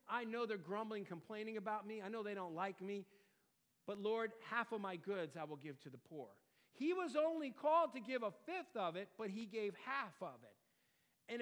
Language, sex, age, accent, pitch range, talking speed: English, male, 50-69, American, 160-230 Hz, 220 wpm